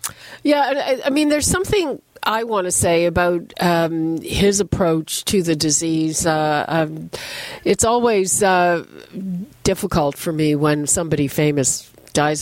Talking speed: 135 wpm